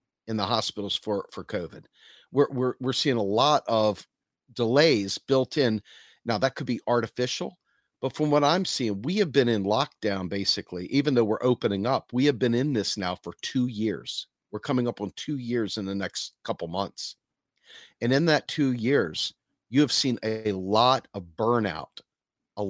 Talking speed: 185 wpm